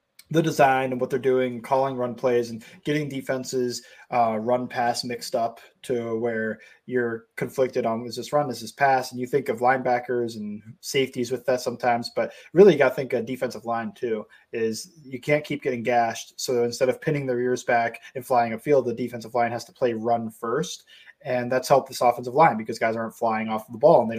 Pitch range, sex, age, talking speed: 120-145 Hz, male, 20-39, 220 wpm